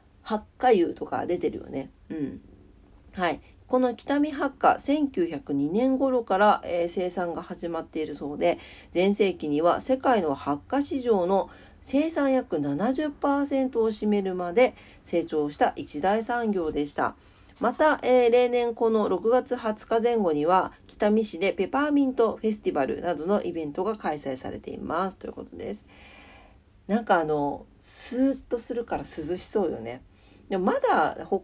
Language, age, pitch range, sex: Japanese, 40-59, 165-255 Hz, female